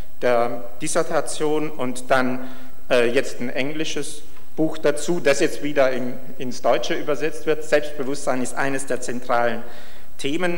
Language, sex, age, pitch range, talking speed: German, male, 50-69, 120-140 Hz, 135 wpm